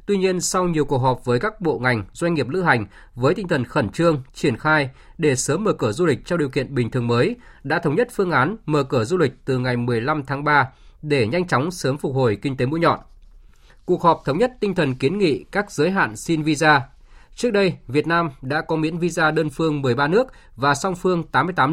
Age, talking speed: 20-39, 240 wpm